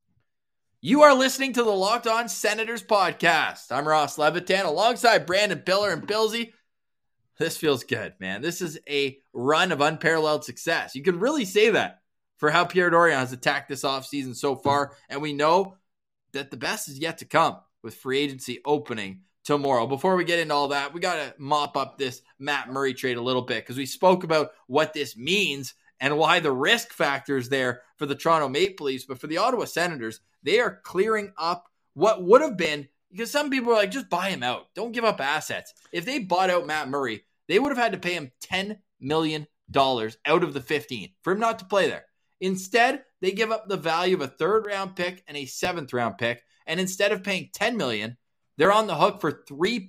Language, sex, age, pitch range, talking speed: English, male, 20-39, 140-210 Hz, 210 wpm